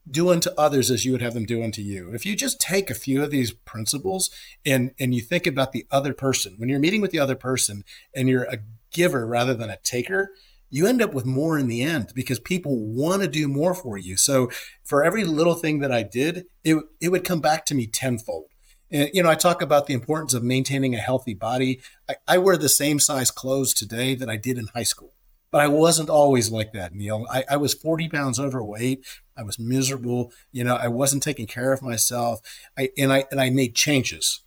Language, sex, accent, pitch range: English, male, American, 120-150 Hz